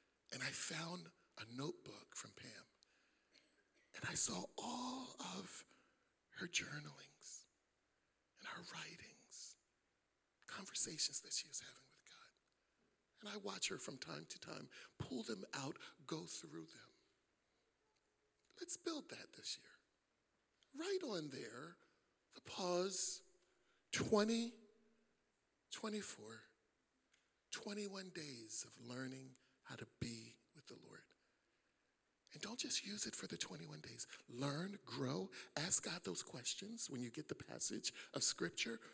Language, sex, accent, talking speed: English, male, American, 125 wpm